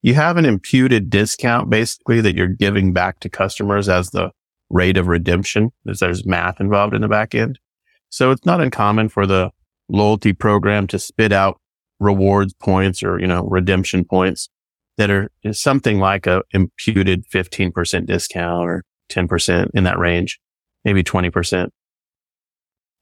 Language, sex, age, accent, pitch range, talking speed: English, male, 30-49, American, 95-120 Hz, 150 wpm